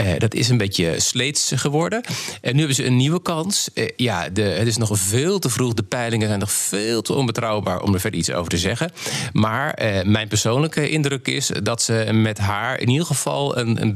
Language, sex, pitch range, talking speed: Dutch, male, 100-125 Hz, 220 wpm